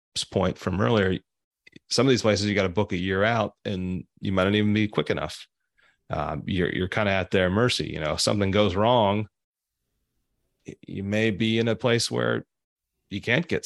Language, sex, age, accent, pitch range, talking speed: English, male, 30-49, American, 85-105 Hz, 200 wpm